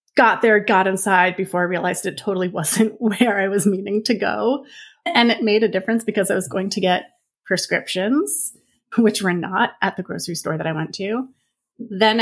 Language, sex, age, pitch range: English, female, 30-49, 190-250 Hz